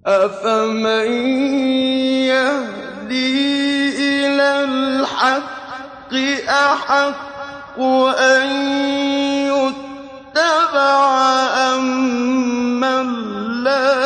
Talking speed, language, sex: 45 wpm, Arabic, male